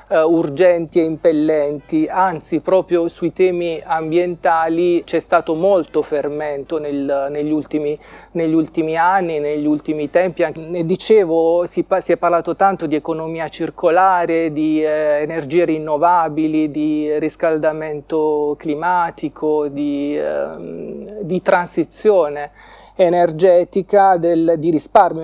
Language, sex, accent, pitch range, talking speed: Italian, male, native, 150-175 Hz, 100 wpm